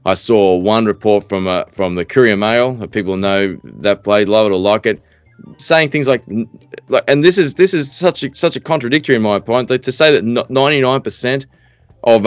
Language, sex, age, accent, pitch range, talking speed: English, male, 20-39, Australian, 105-135 Hz, 215 wpm